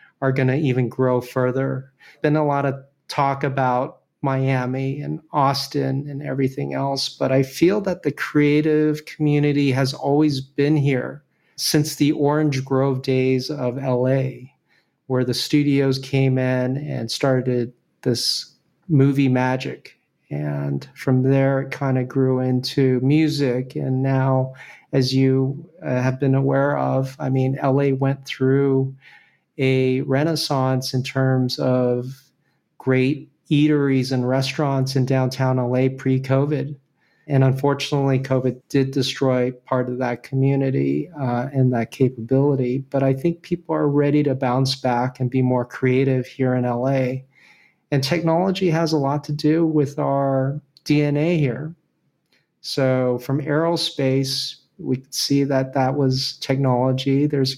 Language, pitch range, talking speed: English, 130-145 Hz, 140 wpm